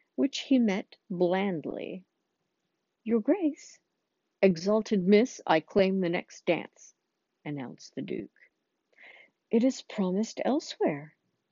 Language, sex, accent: English, female, American